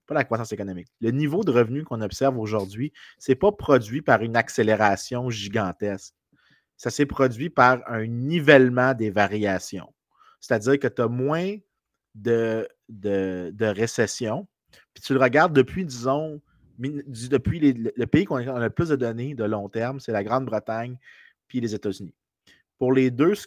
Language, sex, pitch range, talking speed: French, male, 105-135 Hz, 165 wpm